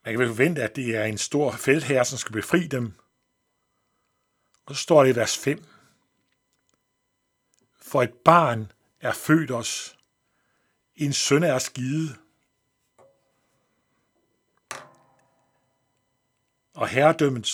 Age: 60-79